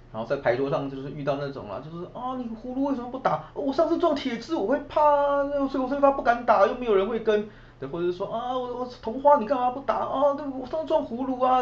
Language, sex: Chinese, male